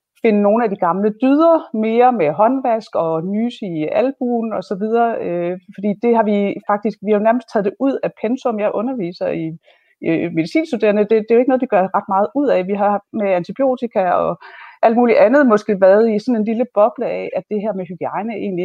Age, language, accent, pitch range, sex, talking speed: 30-49, Danish, native, 185-235 Hz, female, 215 wpm